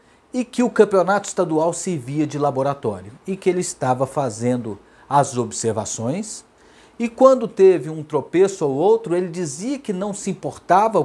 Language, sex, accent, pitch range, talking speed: Portuguese, male, Brazilian, 135-205 Hz, 150 wpm